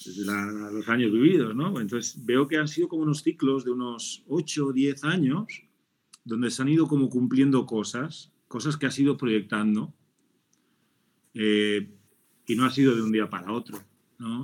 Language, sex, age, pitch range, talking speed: Spanish, male, 30-49, 110-140 Hz, 180 wpm